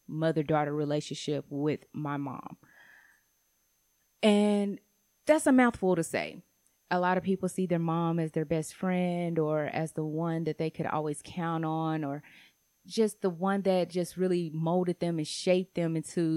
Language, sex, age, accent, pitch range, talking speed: English, female, 20-39, American, 160-190 Hz, 165 wpm